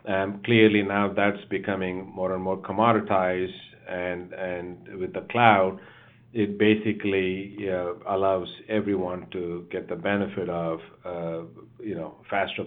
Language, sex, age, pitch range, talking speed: English, male, 50-69, 90-110 Hz, 135 wpm